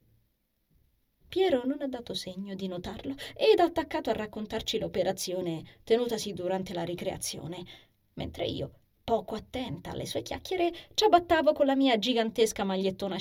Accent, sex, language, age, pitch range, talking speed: native, female, Italian, 20-39, 175-270 Hz, 140 wpm